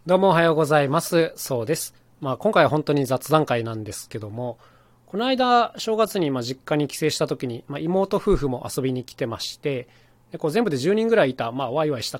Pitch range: 120-175 Hz